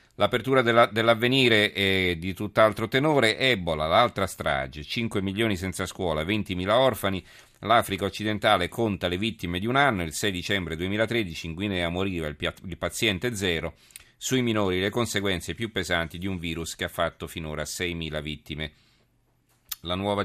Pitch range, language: 85-105 Hz, Italian